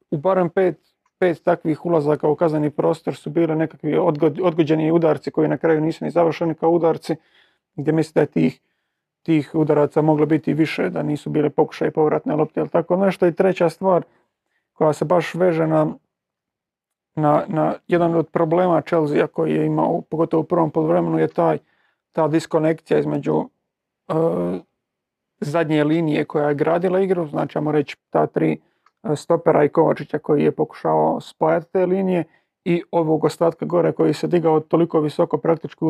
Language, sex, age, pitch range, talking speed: Croatian, male, 40-59, 150-170 Hz, 165 wpm